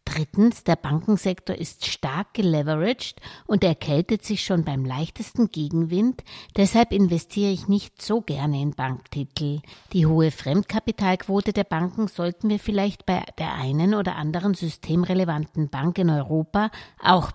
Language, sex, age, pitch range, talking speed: German, female, 60-79, 155-200 Hz, 135 wpm